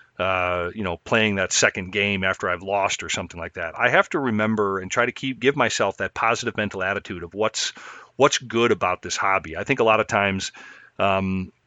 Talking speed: 215 wpm